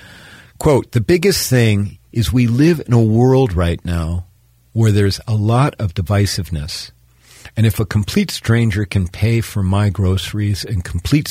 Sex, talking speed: male, 160 wpm